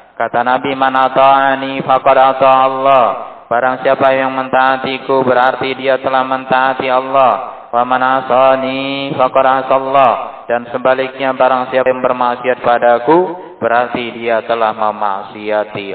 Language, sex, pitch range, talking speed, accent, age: Indonesian, male, 100-130 Hz, 100 wpm, native, 20-39